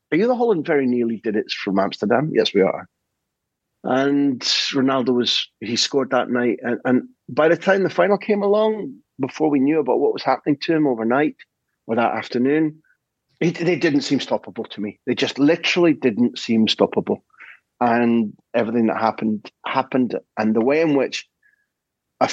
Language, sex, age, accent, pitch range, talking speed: English, male, 40-59, British, 115-150 Hz, 175 wpm